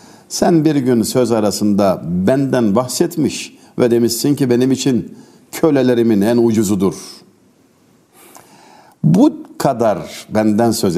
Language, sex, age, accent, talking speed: Turkish, male, 60-79, native, 105 wpm